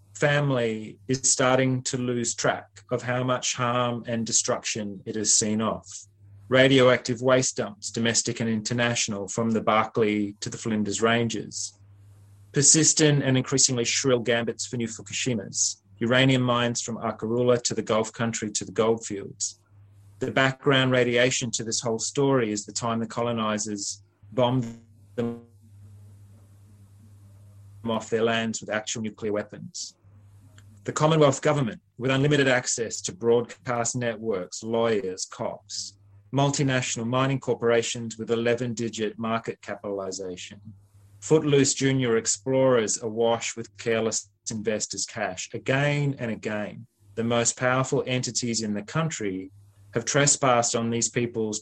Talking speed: 130 wpm